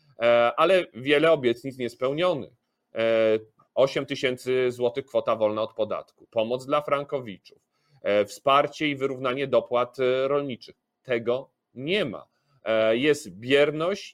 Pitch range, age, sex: 120-150 Hz, 40-59, male